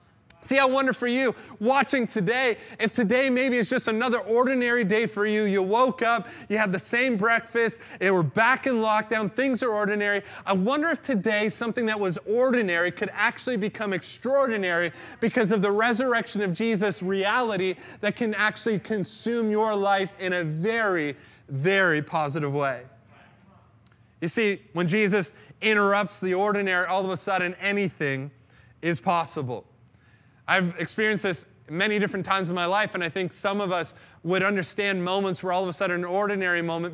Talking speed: 170 wpm